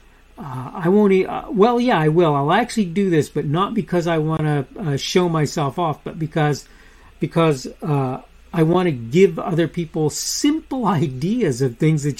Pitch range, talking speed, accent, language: 140-200 Hz, 180 wpm, American, English